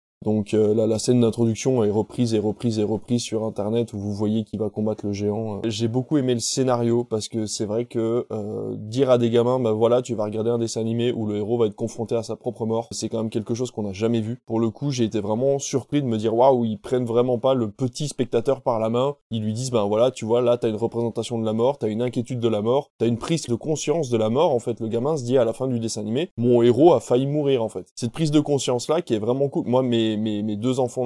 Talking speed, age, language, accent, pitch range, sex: 295 wpm, 20-39, French, French, 110-130 Hz, male